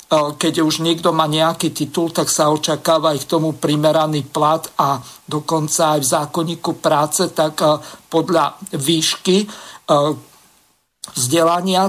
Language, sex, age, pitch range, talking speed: Slovak, male, 50-69, 145-165 Hz, 120 wpm